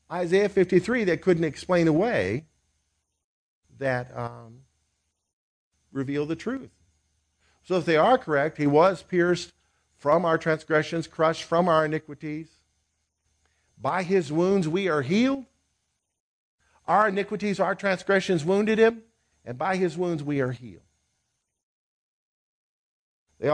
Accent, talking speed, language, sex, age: American, 115 wpm, English, male, 50-69